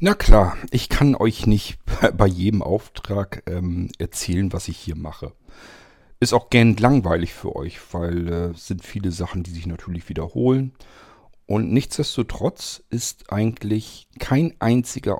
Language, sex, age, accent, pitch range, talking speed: German, male, 50-69, German, 90-120 Hz, 140 wpm